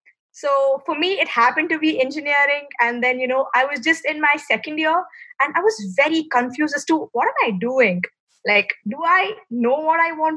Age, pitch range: 20-39, 235-290 Hz